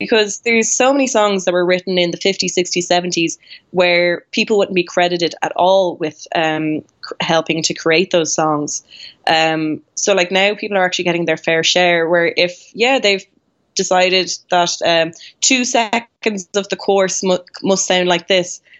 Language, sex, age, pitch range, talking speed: English, female, 20-39, 170-195 Hz, 170 wpm